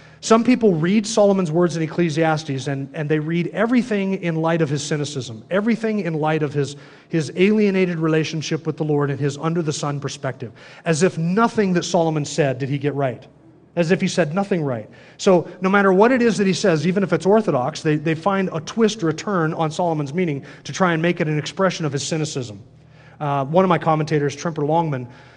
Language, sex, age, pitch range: English, male, 30-49, 150-185 Hz